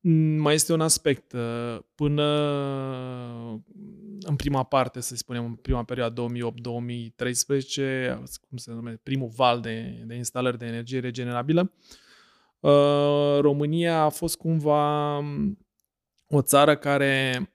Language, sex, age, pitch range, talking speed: Romanian, male, 20-39, 120-140 Hz, 110 wpm